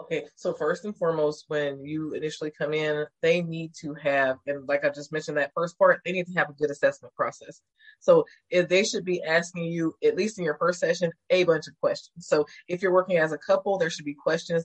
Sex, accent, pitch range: female, American, 160-190 Hz